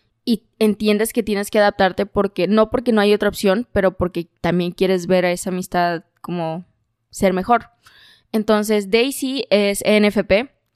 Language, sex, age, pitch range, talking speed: Spanish, female, 20-39, 185-220 Hz, 155 wpm